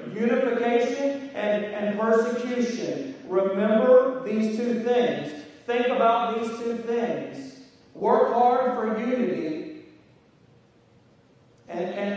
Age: 40-59